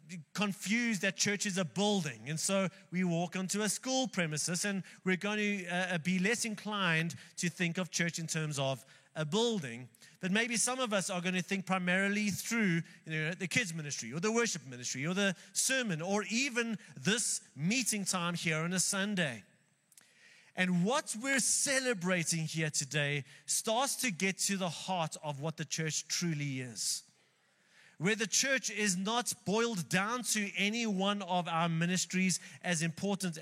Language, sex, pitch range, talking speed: English, male, 170-210 Hz, 165 wpm